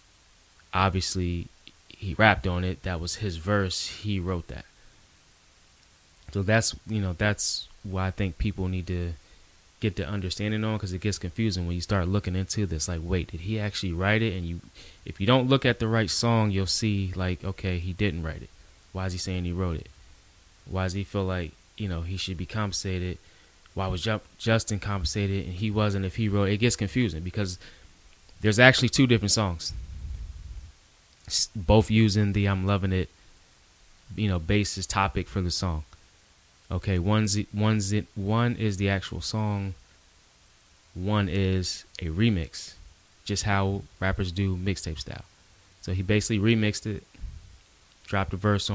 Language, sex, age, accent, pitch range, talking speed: English, male, 20-39, American, 85-105 Hz, 170 wpm